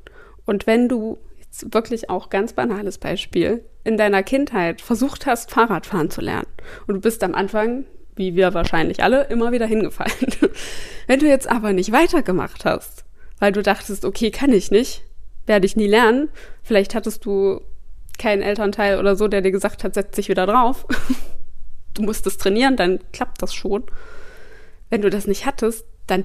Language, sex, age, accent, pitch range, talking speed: German, female, 20-39, German, 195-250 Hz, 175 wpm